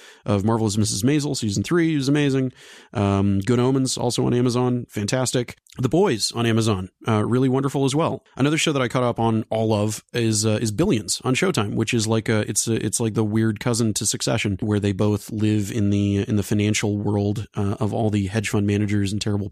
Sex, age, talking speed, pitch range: male, 30-49, 220 wpm, 105-125 Hz